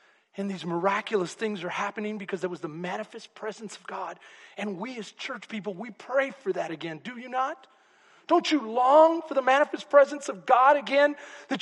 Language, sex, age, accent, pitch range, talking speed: English, male, 40-59, American, 210-300 Hz, 195 wpm